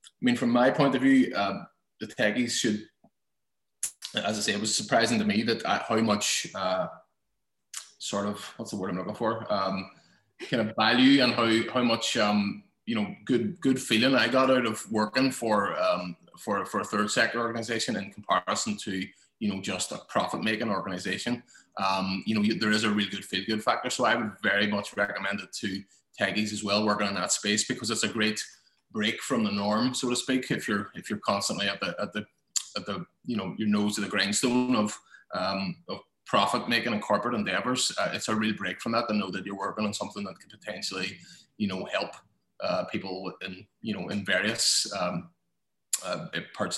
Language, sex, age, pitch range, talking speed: English, male, 20-39, 100-120 Hz, 205 wpm